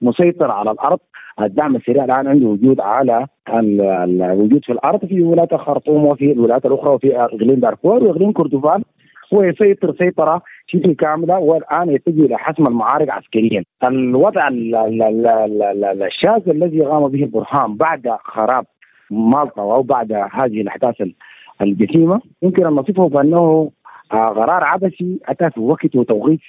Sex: male